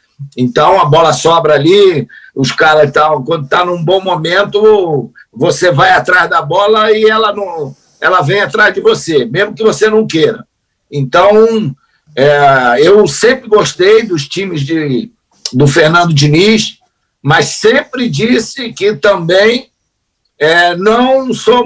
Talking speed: 140 wpm